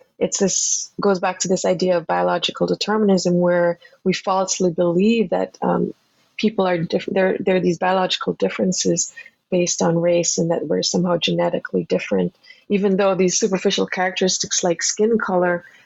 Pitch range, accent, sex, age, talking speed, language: 180-205 Hz, Canadian, female, 20-39, 160 wpm, English